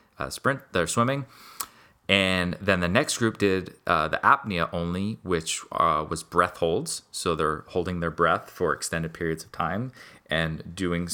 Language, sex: English, male